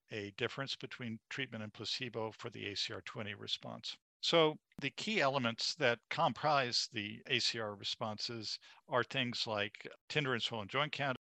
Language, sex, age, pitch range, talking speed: English, male, 50-69, 110-130 Hz, 145 wpm